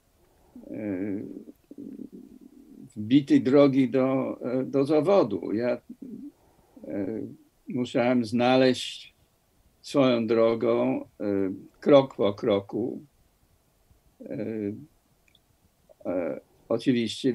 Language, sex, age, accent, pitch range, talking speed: Polish, male, 60-79, native, 115-180 Hz, 50 wpm